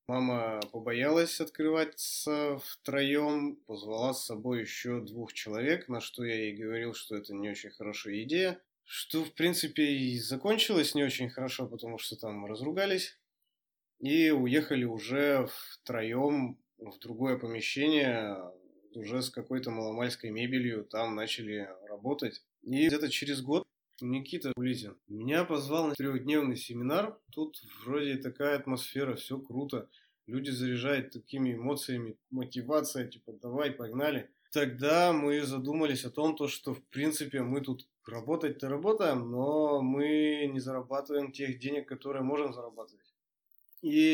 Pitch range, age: 120-145 Hz, 20-39